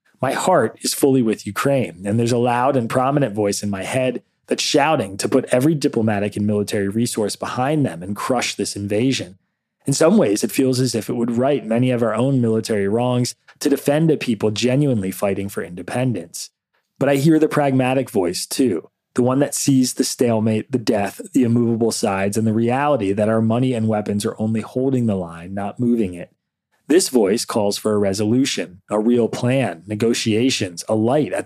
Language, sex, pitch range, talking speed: English, male, 105-130 Hz, 195 wpm